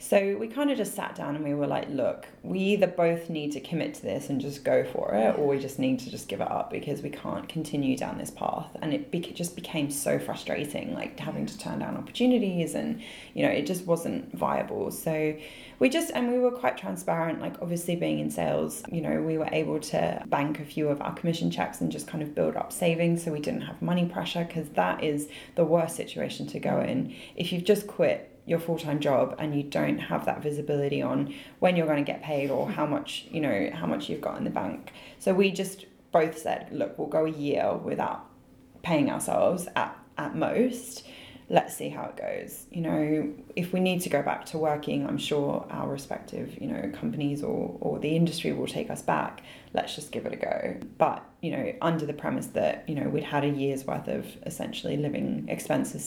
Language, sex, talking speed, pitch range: English, female, 225 wpm, 150-190 Hz